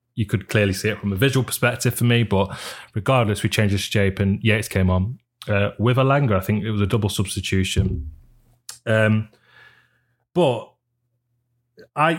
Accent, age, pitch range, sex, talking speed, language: British, 20-39, 100-120 Hz, male, 170 wpm, English